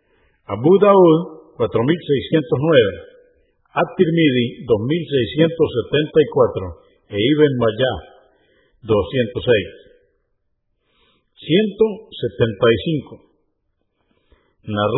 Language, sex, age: Spanish, male, 50-69